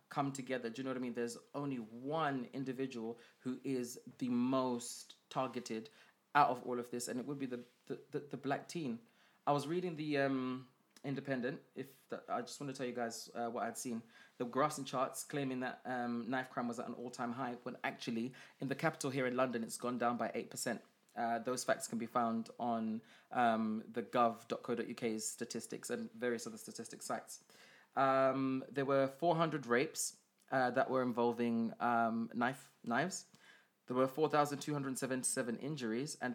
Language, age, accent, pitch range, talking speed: English, 20-39, British, 120-135 Hz, 180 wpm